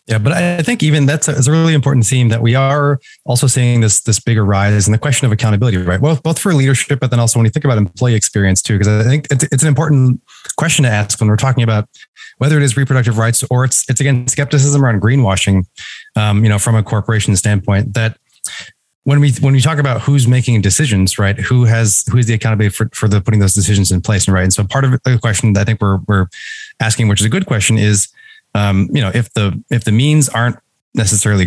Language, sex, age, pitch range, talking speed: English, male, 30-49, 105-135 Hz, 245 wpm